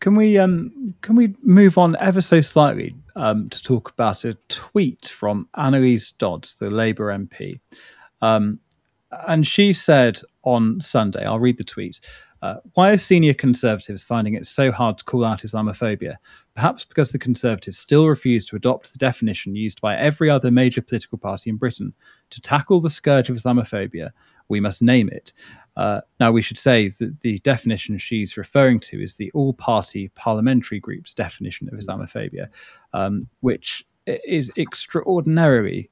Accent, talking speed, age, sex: British, 160 wpm, 30-49, male